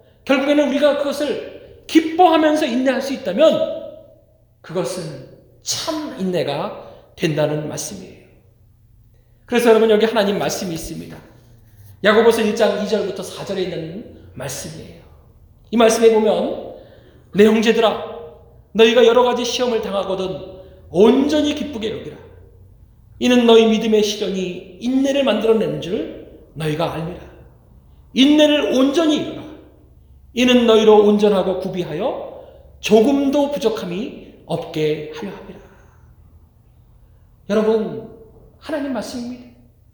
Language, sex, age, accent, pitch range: Korean, male, 40-59, native, 170-275 Hz